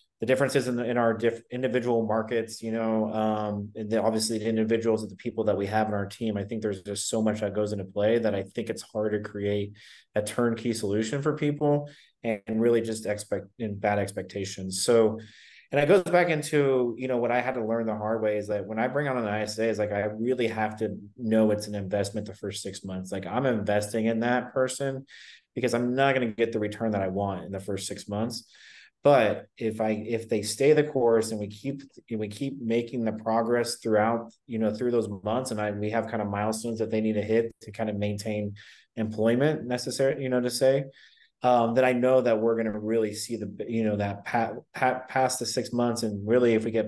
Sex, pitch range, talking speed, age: male, 105-120 Hz, 235 wpm, 20-39